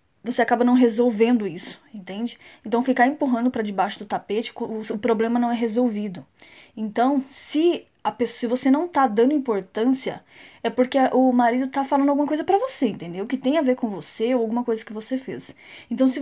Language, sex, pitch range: Portuguese, female, 225-270 Hz